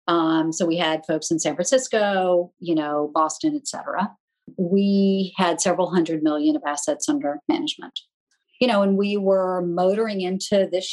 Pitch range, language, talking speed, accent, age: 165-205 Hz, English, 160 wpm, American, 40-59